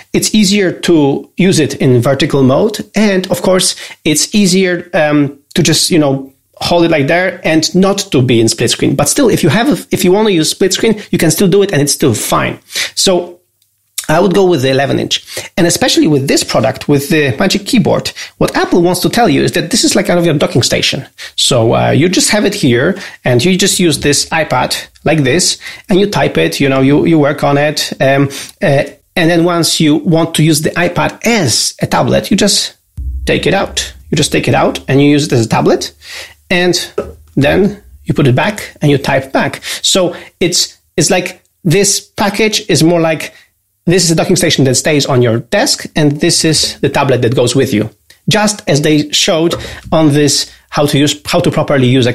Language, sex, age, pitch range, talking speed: English, male, 40-59, 135-185 Hz, 220 wpm